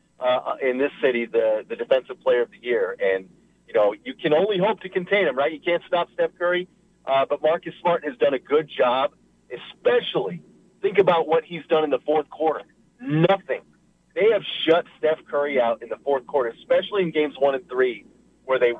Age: 40-59